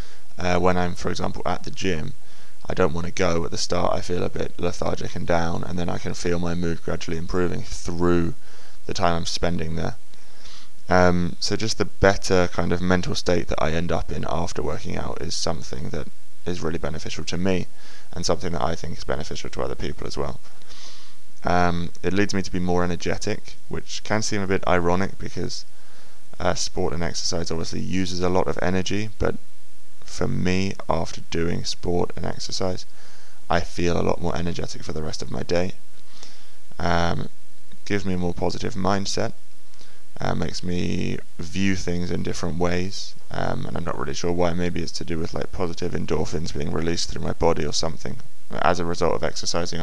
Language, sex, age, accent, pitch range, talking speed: English, male, 20-39, British, 85-90 Hz, 195 wpm